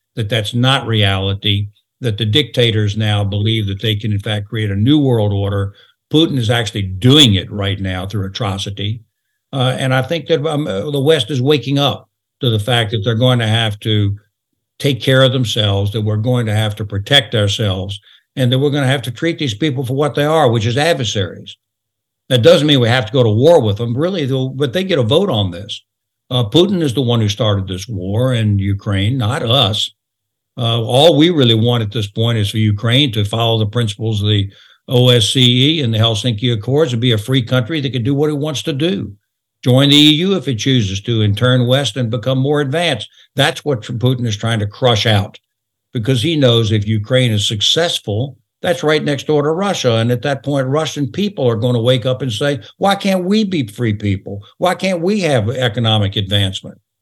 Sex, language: male, English